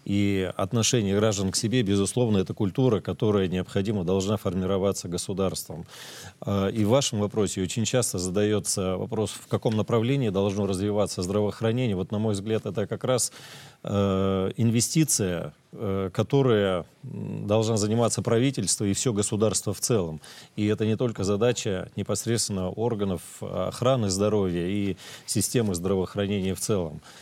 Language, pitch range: Russian, 95-115 Hz